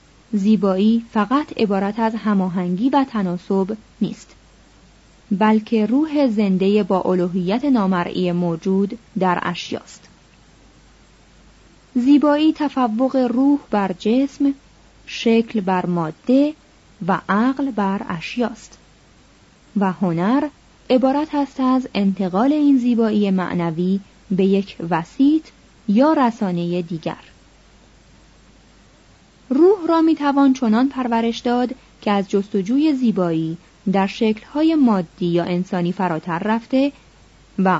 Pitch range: 185-265 Hz